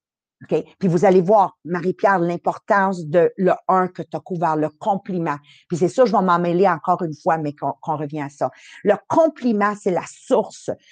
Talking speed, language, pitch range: 190 wpm, English, 180-250 Hz